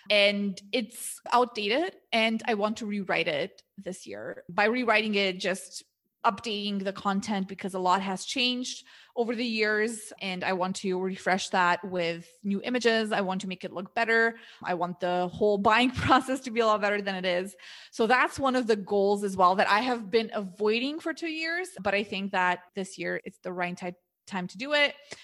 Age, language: 20-39, English